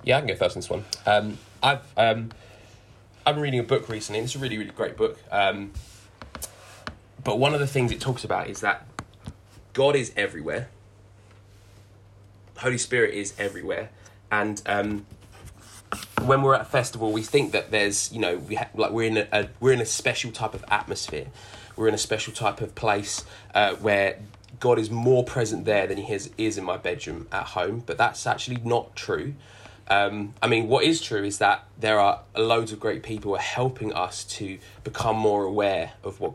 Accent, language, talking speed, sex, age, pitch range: British, English, 200 wpm, male, 20-39, 100-120 Hz